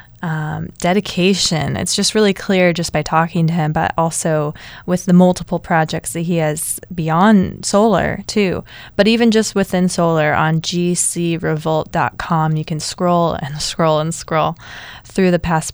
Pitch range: 155-180 Hz